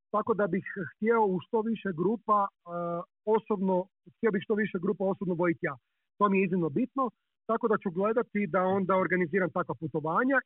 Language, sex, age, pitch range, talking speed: Croatian, male, 40-59, 175-210 Hz, 180 wpm